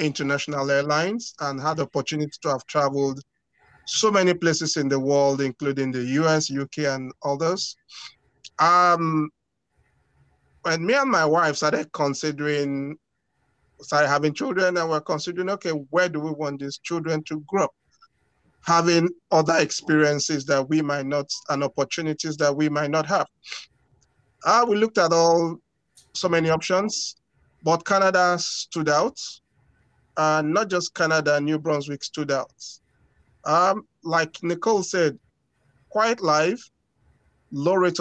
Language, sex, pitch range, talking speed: English, male, 145-180 Hz, 135 wpm